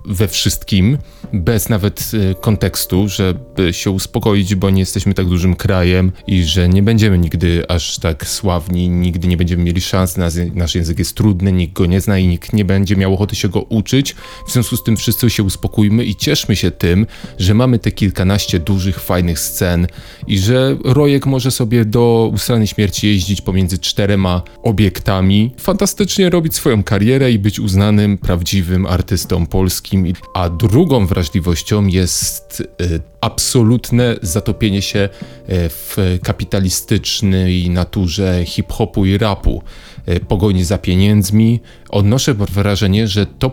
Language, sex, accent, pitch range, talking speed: Polish, male, native, 90-110 Hz, 145 wpm